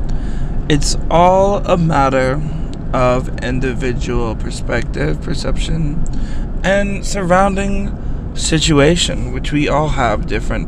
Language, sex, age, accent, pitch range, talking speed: English, male, 20-39, American, 125-165 Hz, 90 wpm